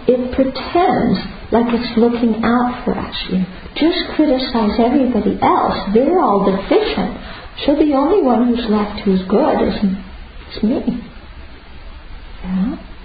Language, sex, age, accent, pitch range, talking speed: English, male, 50-69, American, 180-235 Hz, 135 wpm